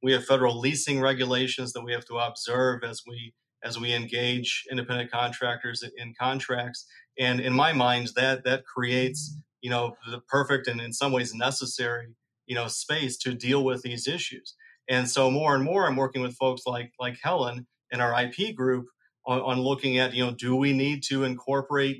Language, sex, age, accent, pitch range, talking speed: English, male, 40-59, American, 120-135 Hz, 195 wpm